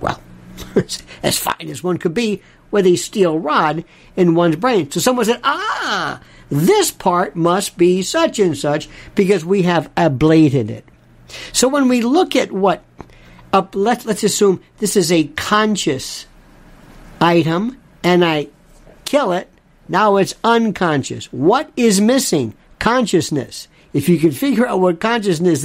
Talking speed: 145 wpm